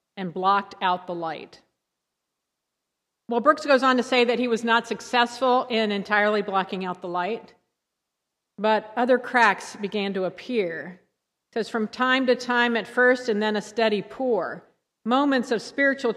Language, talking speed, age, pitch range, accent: English, 165 wpm, 50-69, 195-235 Hz, American